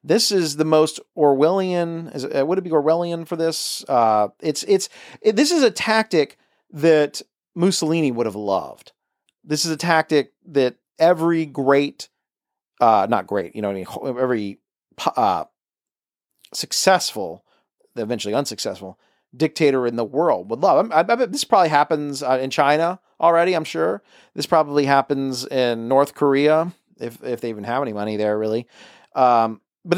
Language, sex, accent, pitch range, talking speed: English, male, American, 140-205 Hz, 150 wpm